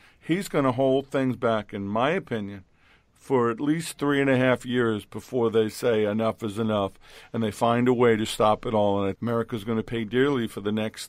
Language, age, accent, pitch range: English, 50-69, American, 110-140 Hz